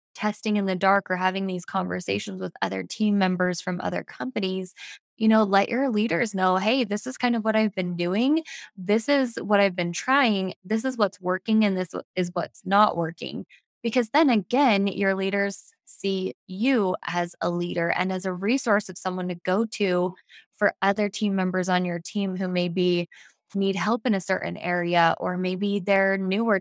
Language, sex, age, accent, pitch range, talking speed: English, female, 20-39, American, 180-215 Hz, 190 wpm